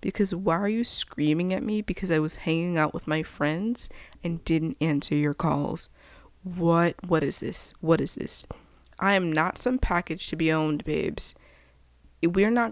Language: English